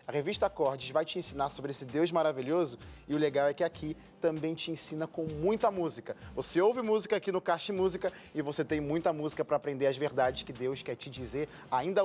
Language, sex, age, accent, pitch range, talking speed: Portuguese, male, 20-39, Brazilian, 150-195 Hz, 220 wpm